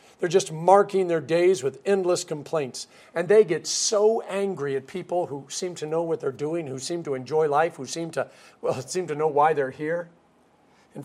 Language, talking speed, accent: English, 205 wpm, American